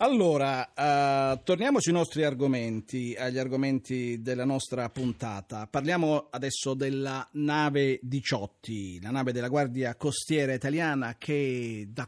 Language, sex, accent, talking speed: Italian, male, native, 120 wpm